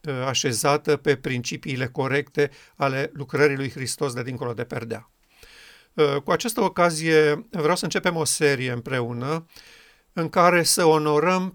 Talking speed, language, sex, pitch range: 130 wpm, Romanian, male, 140-160 Hz